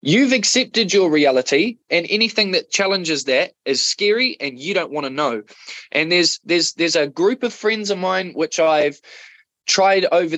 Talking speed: 180 wpm